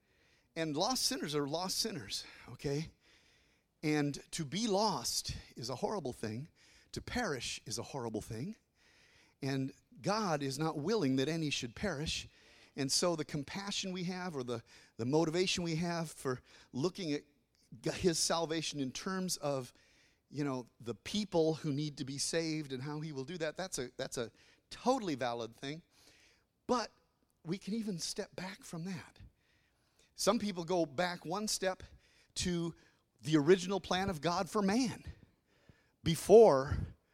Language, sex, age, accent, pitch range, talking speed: English, male, 40-59, American, 135-185 Hz, 150 wpm